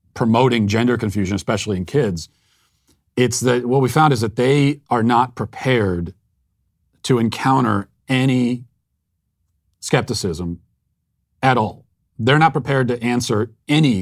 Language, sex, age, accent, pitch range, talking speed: English, male, 40-59, American, 100-130 Hz, 125 wpm